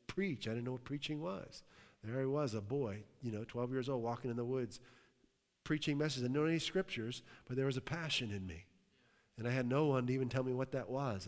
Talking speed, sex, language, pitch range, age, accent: 240 wpm, male, English, 120-145 Hz, 40-59, American